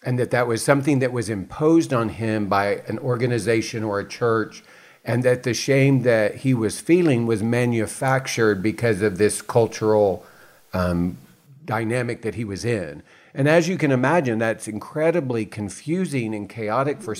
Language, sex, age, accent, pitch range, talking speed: English, male, 50-69, American, 110-135 Hz, 165 wpm